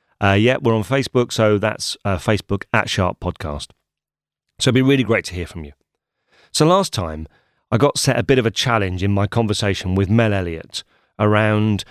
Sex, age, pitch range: male, 30-49, 95-120 Hz